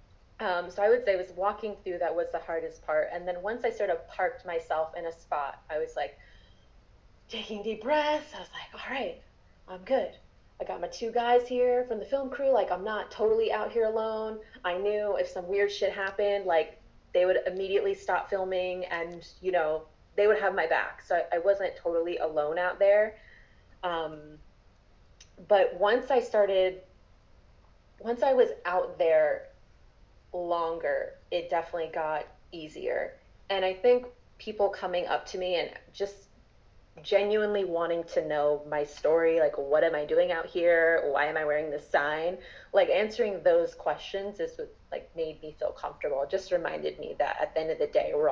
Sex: female